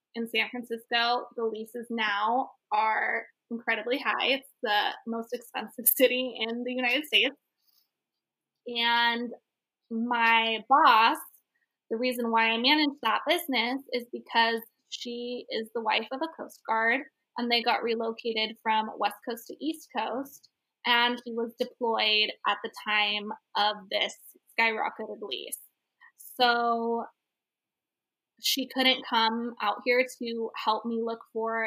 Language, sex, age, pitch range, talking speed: English, female, 20-39, 225-265 Hz, 135 wpm